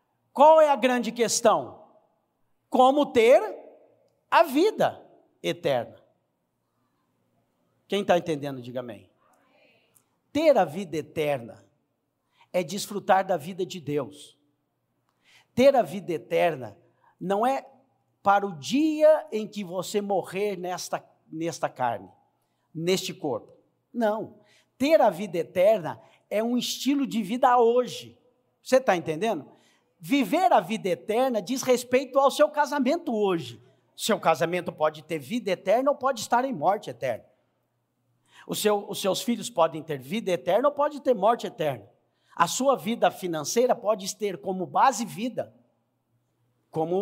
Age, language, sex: 60-79, English, male